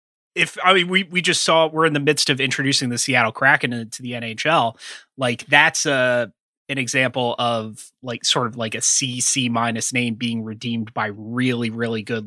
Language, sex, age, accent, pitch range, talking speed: English, male, 30-49, American, 120-150 Hz, 195 wpm